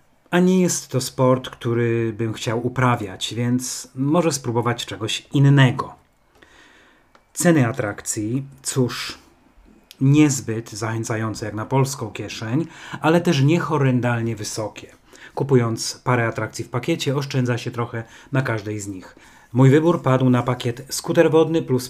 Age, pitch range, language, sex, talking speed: 30-49, 115-140 Hz, Polish, male, 130 wpm